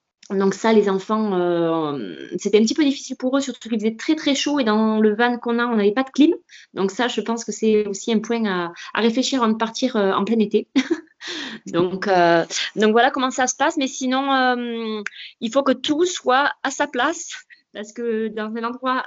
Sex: female